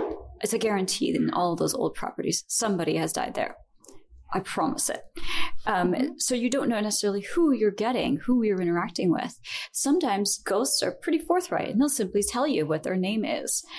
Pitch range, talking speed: 175-245 Hz, 185 wpm